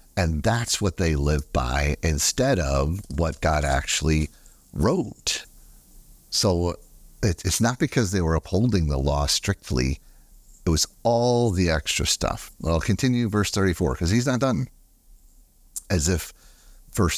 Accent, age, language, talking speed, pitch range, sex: American, 50-69, English, 140 wpm, 75-100 Hz, male